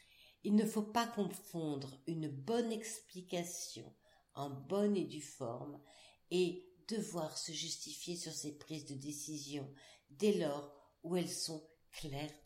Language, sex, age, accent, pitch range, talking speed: French, female, 50-69, French, 140-180 Hz, 135 wpm